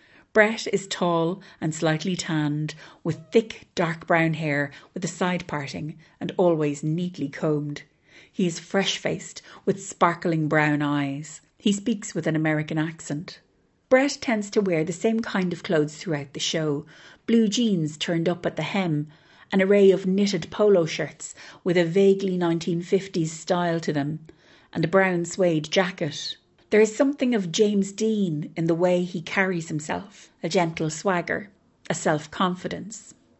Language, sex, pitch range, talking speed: English, female, 155-195 Hz, 155 wpm